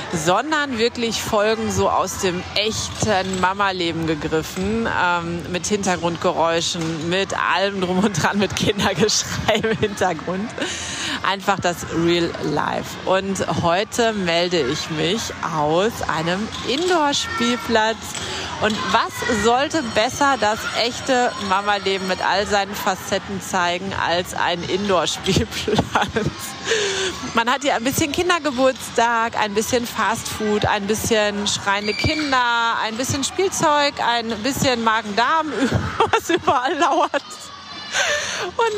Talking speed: 110 wpm